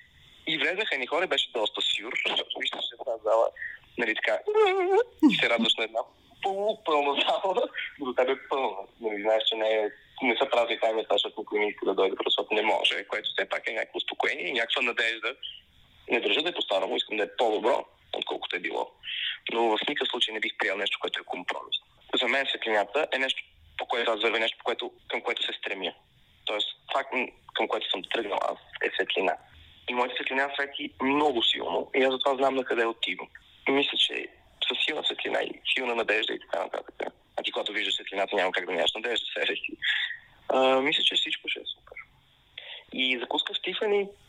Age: 20-39